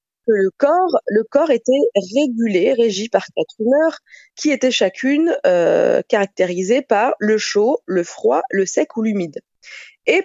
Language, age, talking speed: French, 20-39, 140 wpm